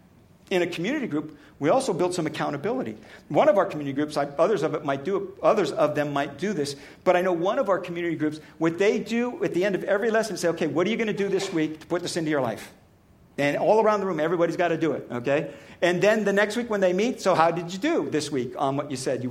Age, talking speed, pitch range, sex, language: 50-69, 265 wpm, 165-235 Hz, male, English